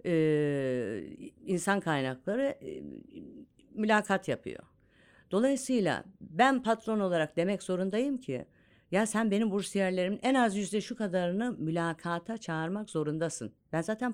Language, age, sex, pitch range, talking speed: Turkish, 50-69, female, 145-210 Hz, 115 wpm